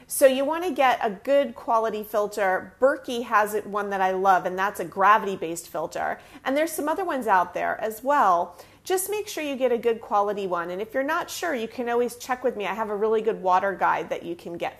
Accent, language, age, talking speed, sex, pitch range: American, English, 30-49, 245 wpm, female, 210-285 Hz